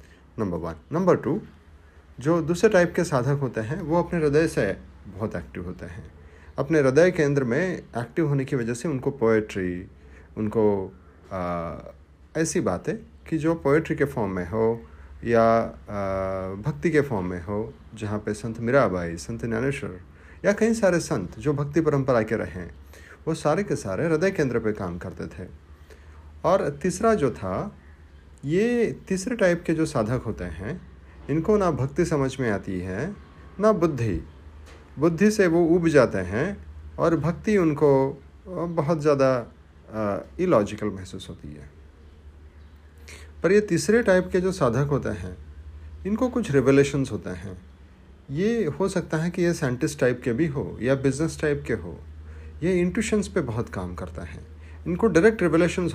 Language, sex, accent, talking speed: Hindi, male, native, 160 wpm